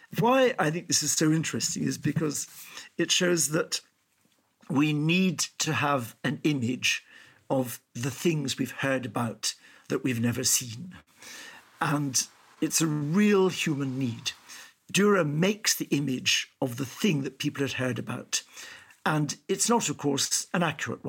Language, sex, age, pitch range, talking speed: English, male, 60-79, 130-160 Hz, 150 wpm